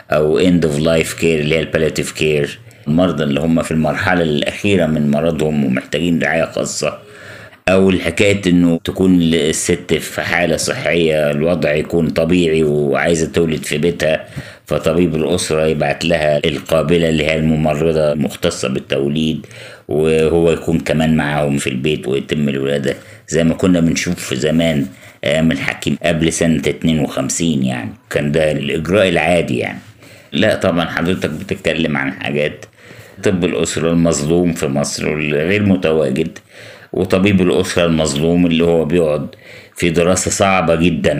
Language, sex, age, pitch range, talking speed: Arabic, male, 50-69, 75-90 Hz, 135 wpm